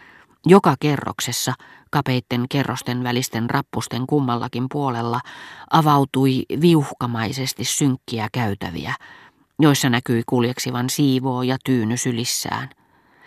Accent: native